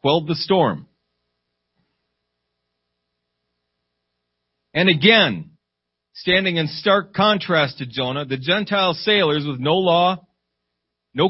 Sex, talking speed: male, 95 wpm